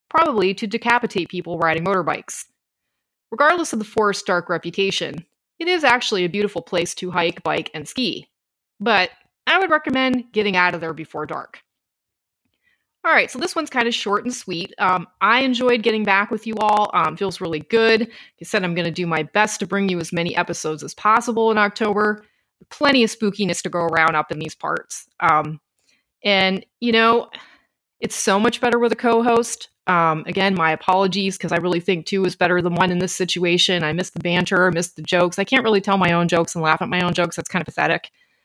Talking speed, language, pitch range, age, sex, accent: 210 wpm, English, 175-225 Hz, 30-49, female, American